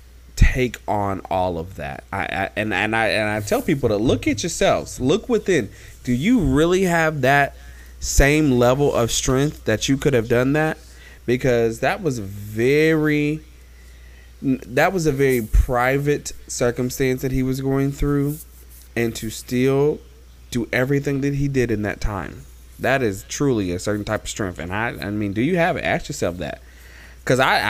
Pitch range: 90-135 Hz